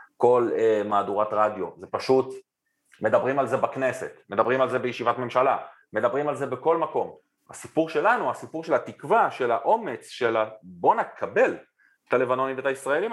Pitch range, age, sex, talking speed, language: 100-150 Hz, 30-49, male, 155 wpm, Hebrew